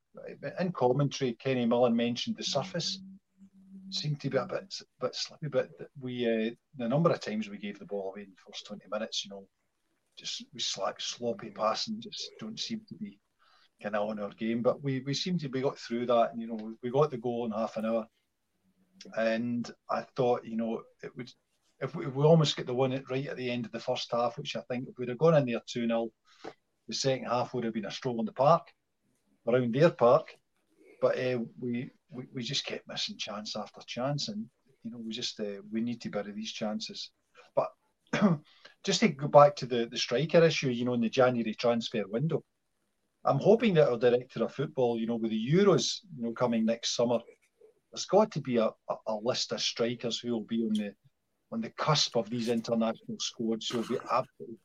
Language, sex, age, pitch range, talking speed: English, male, 40-59, 115-150 Hz, 220 wpm